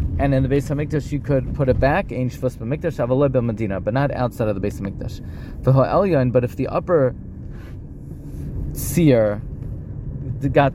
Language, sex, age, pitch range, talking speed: English, male, 30-49, 120-145 Hz, 165 wpm